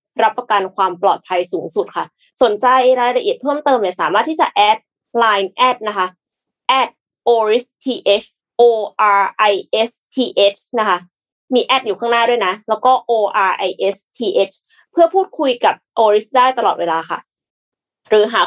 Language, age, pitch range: Thai, 20-39, 200-270 Hz